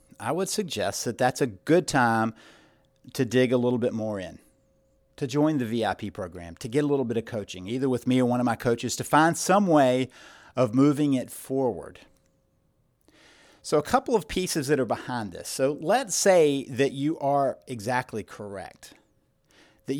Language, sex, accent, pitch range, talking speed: English, male, American, 125-155 Hz, 185 wpm